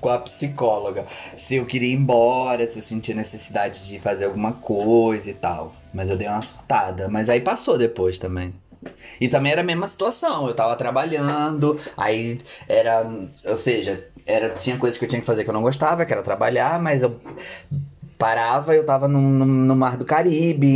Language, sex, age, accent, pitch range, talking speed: Portuguese, male, 20-39, Brazilian, 110-140 Hz, 195 wpm